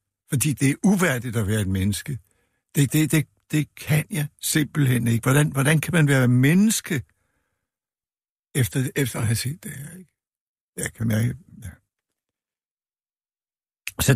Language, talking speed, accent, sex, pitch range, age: Danish, 150 wpm, native, male, 110-145 Hz, 60-79